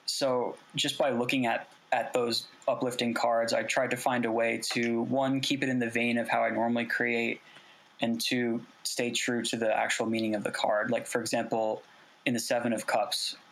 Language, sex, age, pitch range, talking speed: English, male, 20-39, 115-125 Hz, 205 wpm